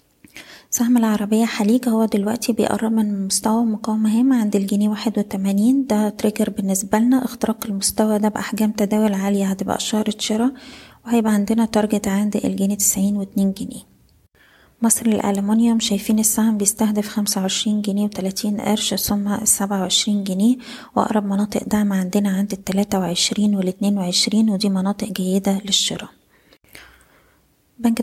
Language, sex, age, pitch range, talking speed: Arabic, female, 20-39, 200-220 Hz, 125 wpm